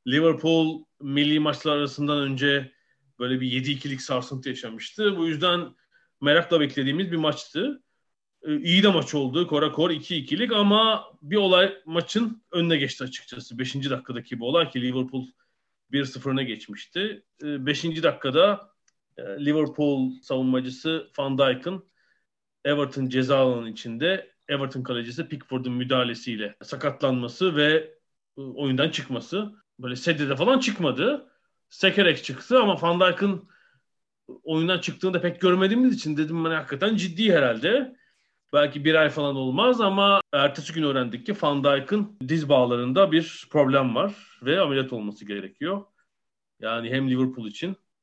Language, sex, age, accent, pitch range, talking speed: Turkish, male, 40-59, native, 130-175 Hz, 125 wpm